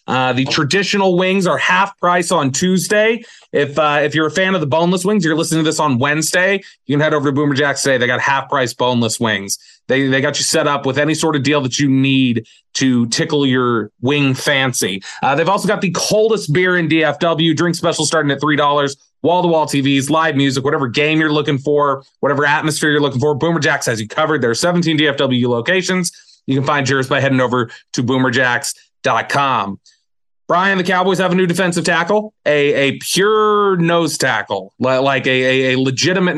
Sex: male